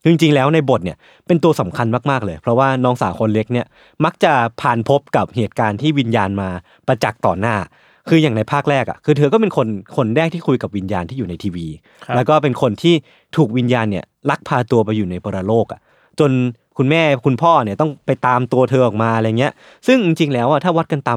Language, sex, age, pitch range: Thai, male, 20-39, 110-155 Hz